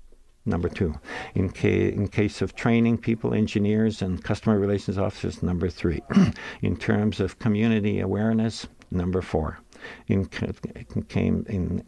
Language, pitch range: English, 95-110 Hz